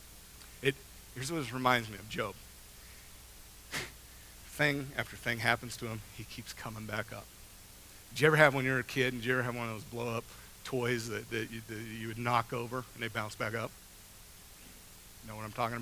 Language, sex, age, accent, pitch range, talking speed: English, male, 40-59, American, 110-145 Hz, 195 wpm